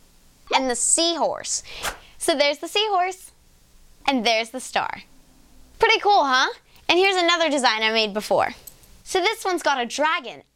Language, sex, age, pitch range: English, female, 10-29, 245-350 Hz